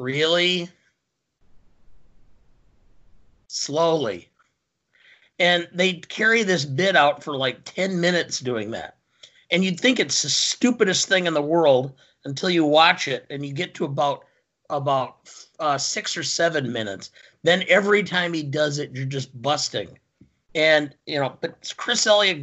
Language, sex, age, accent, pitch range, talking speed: English, male, 50-69, American, 135-170 Hz, 145 wpm